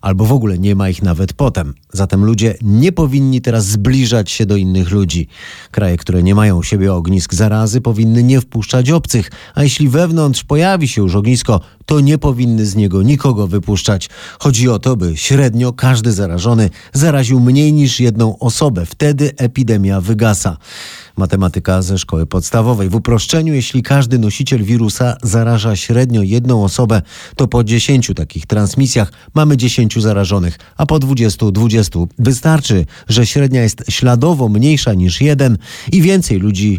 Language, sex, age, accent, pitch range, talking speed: Polish, male, 30-49, native, 95-130 Hz, 155 wpm